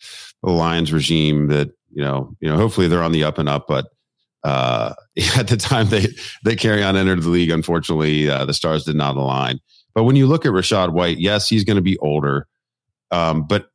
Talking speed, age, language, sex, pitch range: 210 wpm, 40-59, English, male, 80-95 Hz